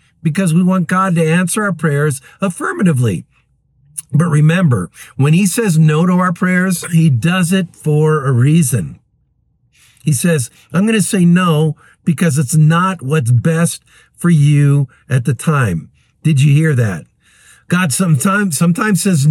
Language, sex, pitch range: English, male, 135-175 Hz